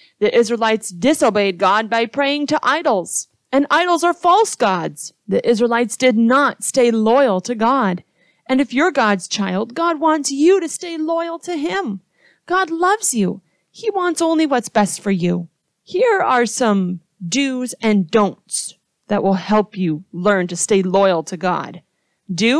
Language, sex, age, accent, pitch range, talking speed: English, female, 30-49, American, 190-290 Hz, 160 wpm